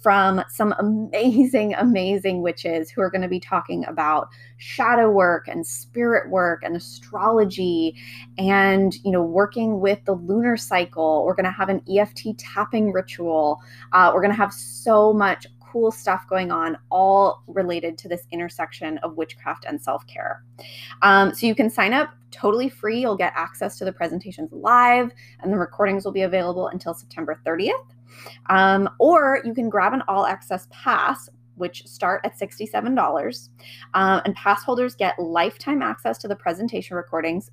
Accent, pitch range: American, 165-215 Hz